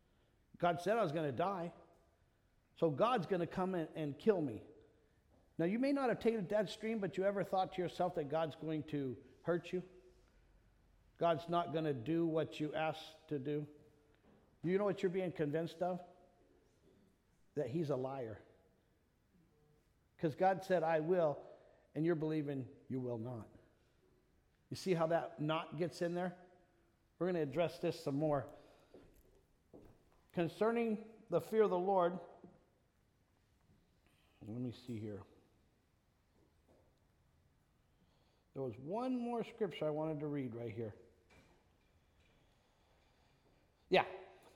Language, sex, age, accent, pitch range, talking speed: English, male, 50-69, American, 130-200 Hz, 145 wpm